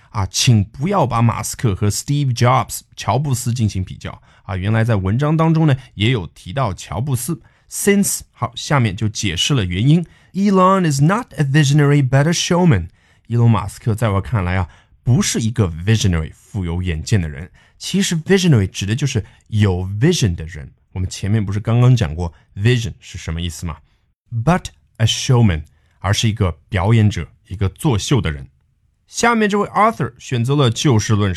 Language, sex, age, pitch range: Chinese, male, 20-39, 100-145 Hz